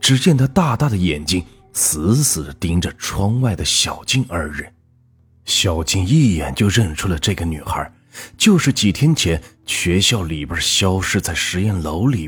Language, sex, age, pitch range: Chinese, male, 30-49, 85-120 Hz